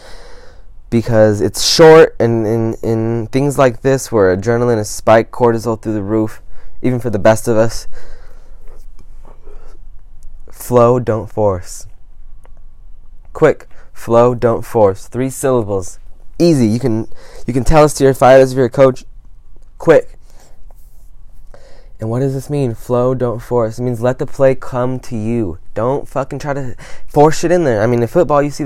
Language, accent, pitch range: English, American, 115-155 Hz